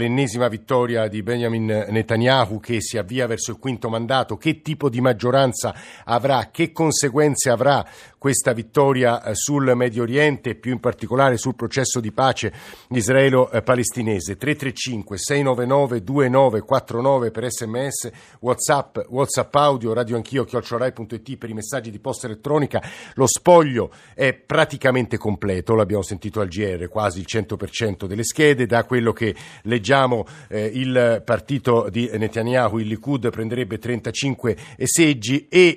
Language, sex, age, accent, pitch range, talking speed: Italian, male, 50-69, native, 110-130 Hz, 130 wpm